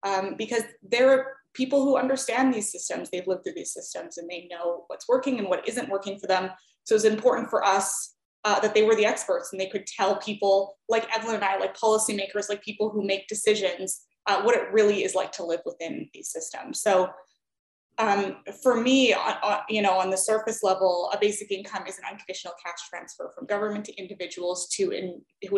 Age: 20-39